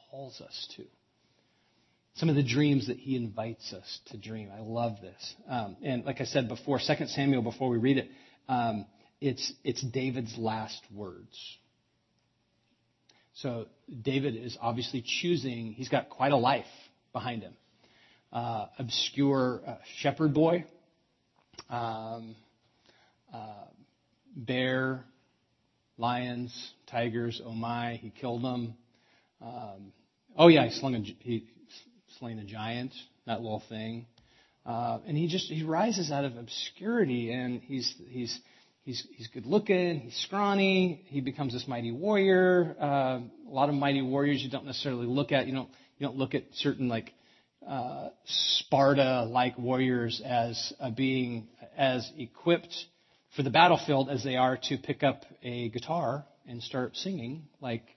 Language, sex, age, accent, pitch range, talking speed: English, male, 40-59, American, 115-140 Hz, 145 wpm